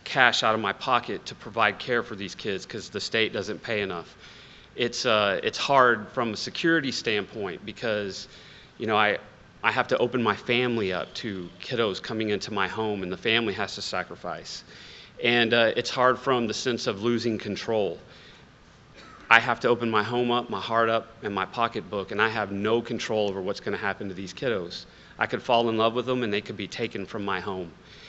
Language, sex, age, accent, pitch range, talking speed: English, male, 30-49, American, 100-120 Hz, 210 wpm